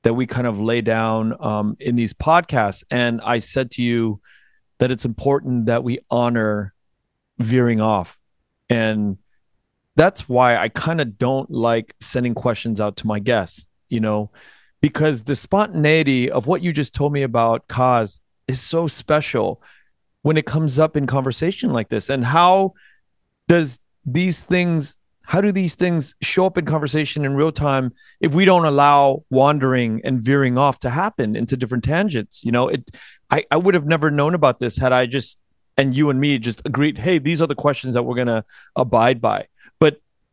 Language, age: English, 30-49